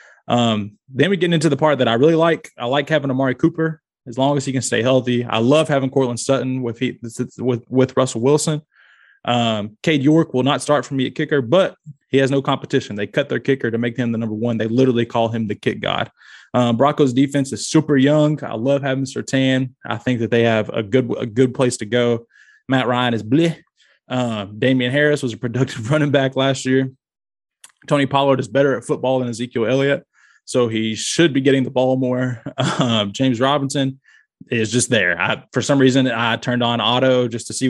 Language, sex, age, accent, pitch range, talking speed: English, male, 20-39, American, 115-140 Hz, 220 wpm